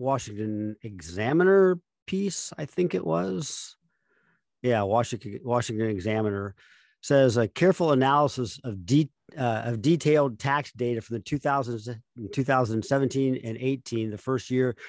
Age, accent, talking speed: 50-69, American, 125 wpm